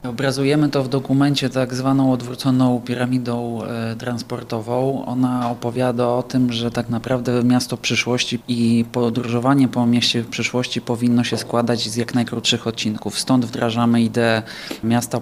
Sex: male